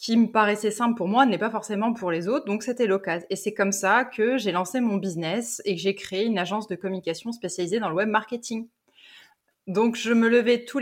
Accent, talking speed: French, 235 wpm